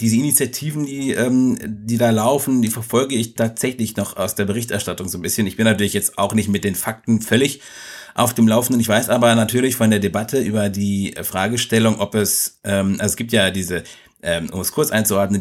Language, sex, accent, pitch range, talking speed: German, male, German, 95-120 Hz, 200 wpm